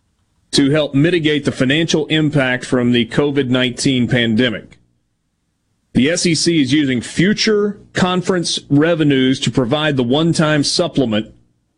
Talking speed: 110 wpm